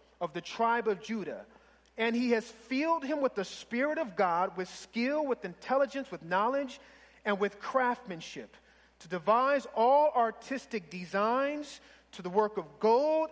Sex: male